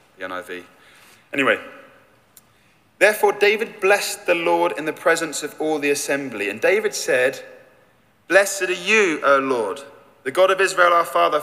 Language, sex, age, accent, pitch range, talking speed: English, male, 30-49, British, 140-190 Hz, 140 wpm